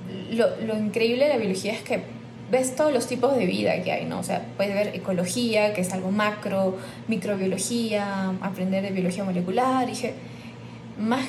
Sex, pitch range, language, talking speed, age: female, 180-230 Hz, Spanish, 175 wpm, 10-29